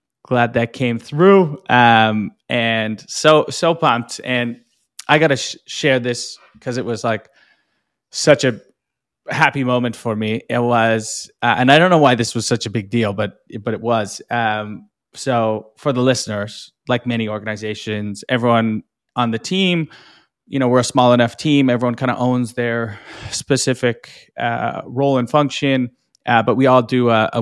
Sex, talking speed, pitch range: male, 175 wpm, 110-130 Hz